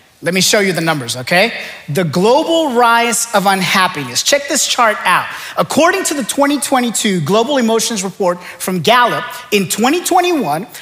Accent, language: American, English